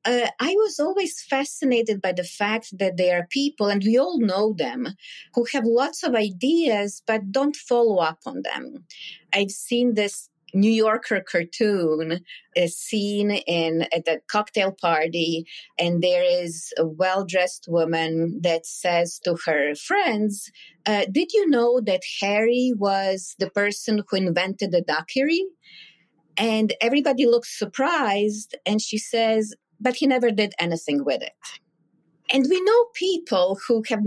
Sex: female